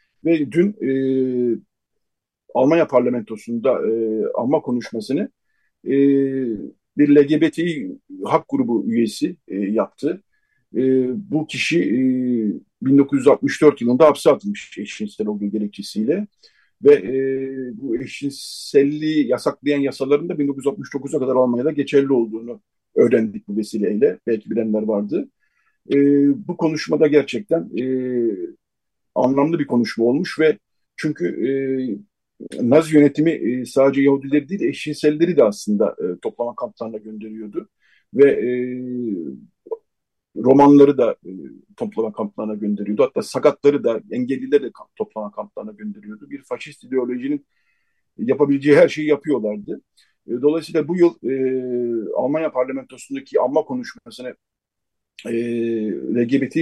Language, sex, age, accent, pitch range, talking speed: Turkish, male, 50-69, native, 120-155 Hz, 110 wpm